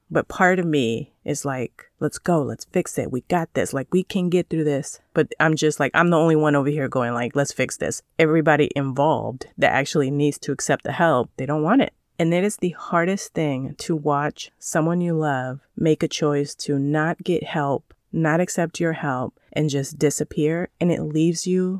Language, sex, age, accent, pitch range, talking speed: English, female, 30-49, American, 140-170 Hz, 210 wpm